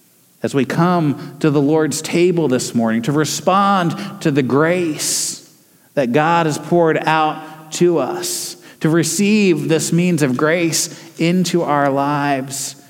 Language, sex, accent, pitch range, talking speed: English, male, American, 130-175 Hz, 140 wpm